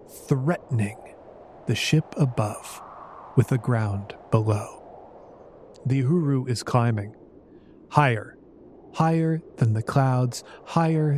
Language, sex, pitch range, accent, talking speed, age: English, male, 120-155 Hz, American, 95 wpm, 40-59